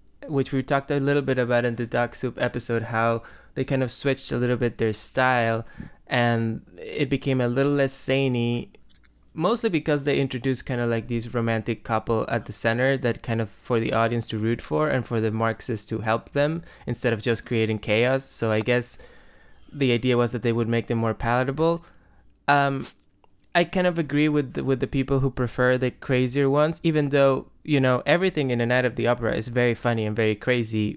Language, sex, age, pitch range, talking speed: English, male, 20-39, 110-135 Hz, 210 wpm